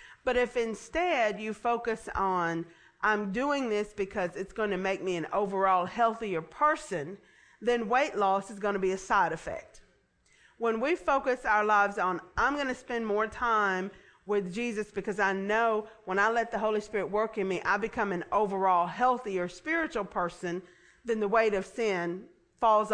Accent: American